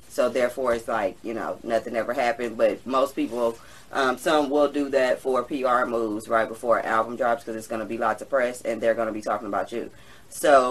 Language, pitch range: English, 120-145 Hz